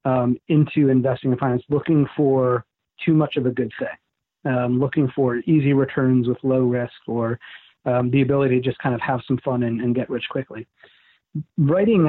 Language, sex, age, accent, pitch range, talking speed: English, male, 40-59, American, 125-150 Hz, 190 wpm